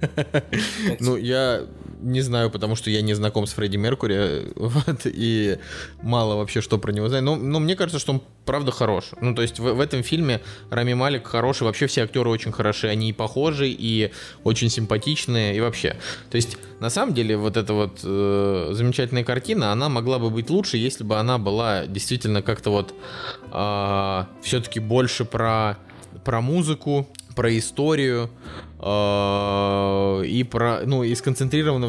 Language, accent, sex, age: Russian, native, male, 20-39